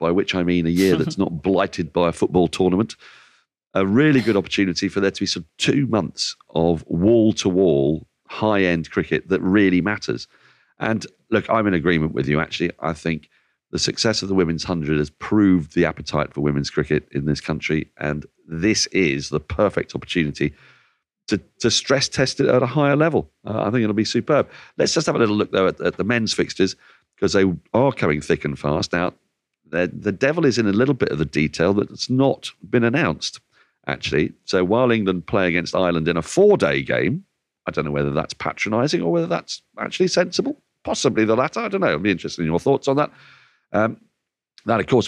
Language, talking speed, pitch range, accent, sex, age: English, 205 wpm, 80-110 Hz, British, male, 40-59